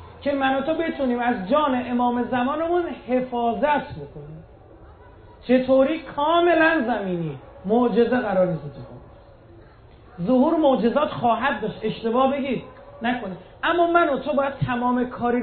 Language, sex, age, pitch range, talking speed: Persian, male, 30-49, 180-275 Hz, 125 wpm